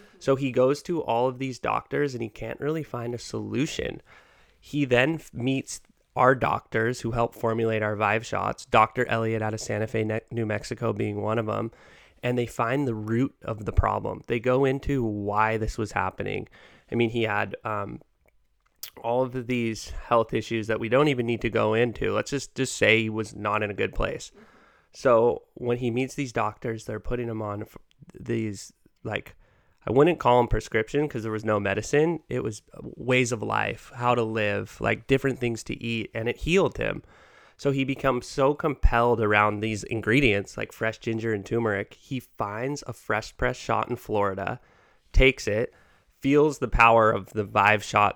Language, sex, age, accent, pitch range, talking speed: English, male, 20-39, American, 110-125 Hz, 190 wpm